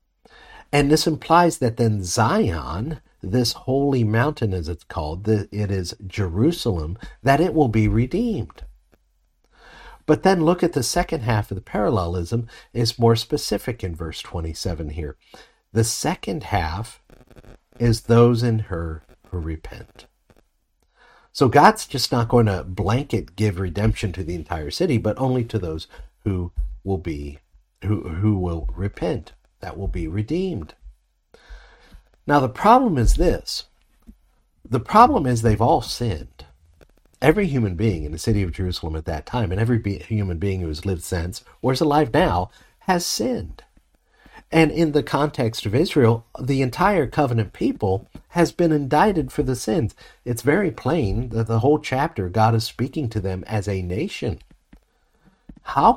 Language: English